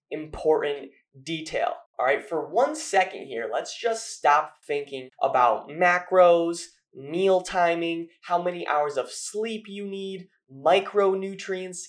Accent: American